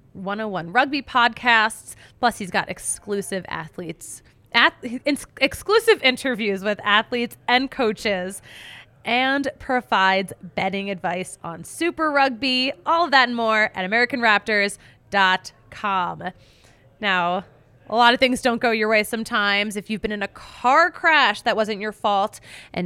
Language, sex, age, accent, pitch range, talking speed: English, female, 20-39, American, 195-245 Hz, 135 wpm